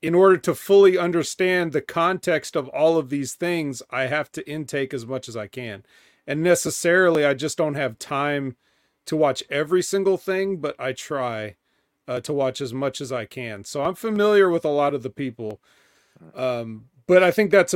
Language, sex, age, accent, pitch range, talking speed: English, male, 40-59, American, 130-180 Hz, 195 wpm